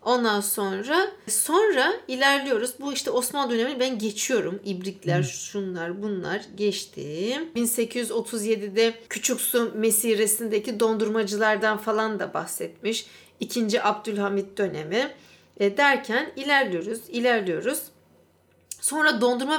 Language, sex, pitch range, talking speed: Turkish, female, 200-300 Hz, 95 wpm